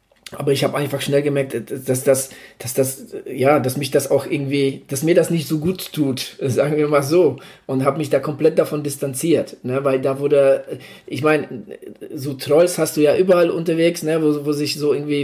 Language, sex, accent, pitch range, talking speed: German, male, German, 130-155 Hz, 210 wpm